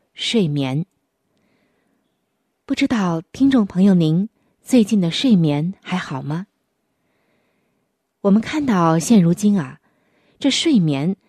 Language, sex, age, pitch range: Chinese, female, 20-39, 165-245 Hz